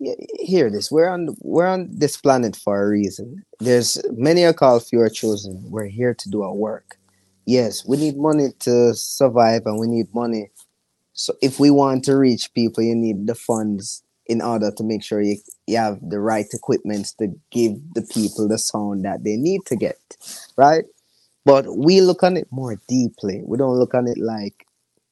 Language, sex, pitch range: English, male, 110-135 Hz